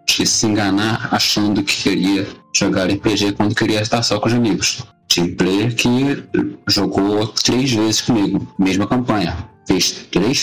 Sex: male